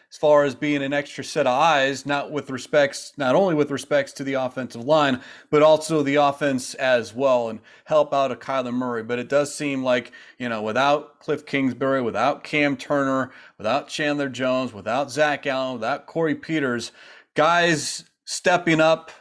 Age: 40-59